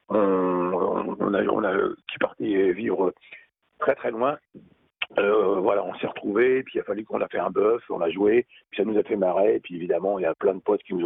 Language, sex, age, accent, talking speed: French, male, 40-59, French, 245 wpm